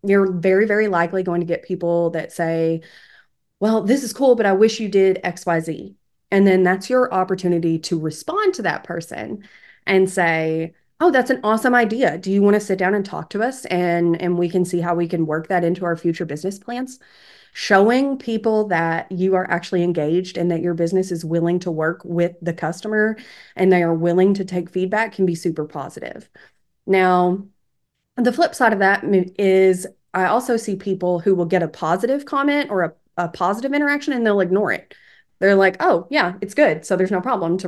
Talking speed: 205 wpm